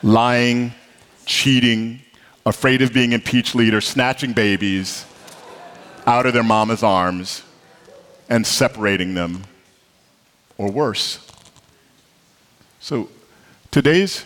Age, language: 40-59, English